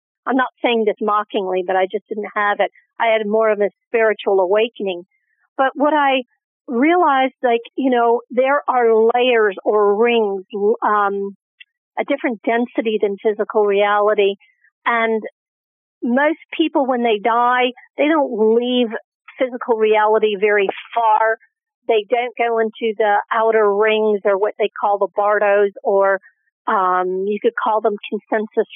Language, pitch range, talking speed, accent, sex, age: English, 215-255 Hz, 145 wpm, American, female, 50-69